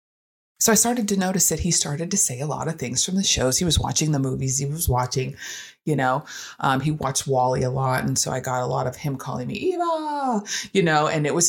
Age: 30-49